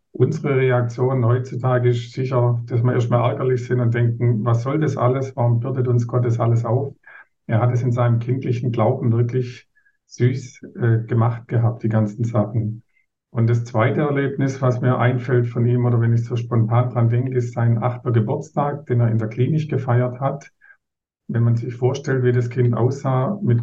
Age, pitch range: 50-69, 115-125 Hz